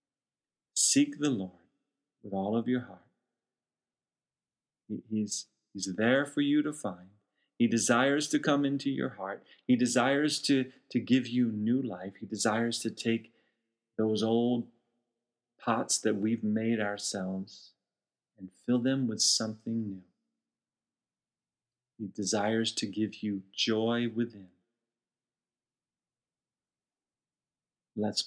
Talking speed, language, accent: 115 wpm, English, American